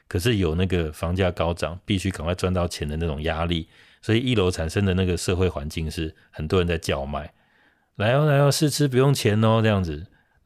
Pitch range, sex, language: 80-100 Hz, male, Chinese